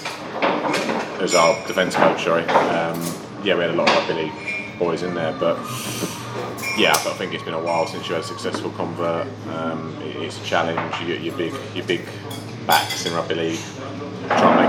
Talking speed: 200 wpm